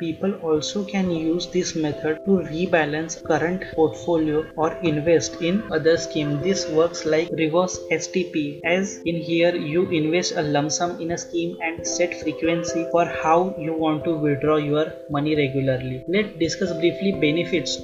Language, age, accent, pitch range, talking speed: English, 20-39, Indian, 155-180 Hz, 160 wpm